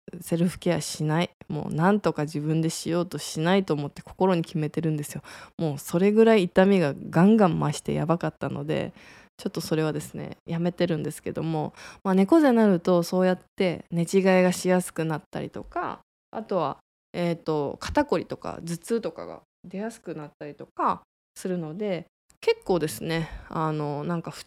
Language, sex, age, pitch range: Japanese, female, 20-39, 160-210 Hz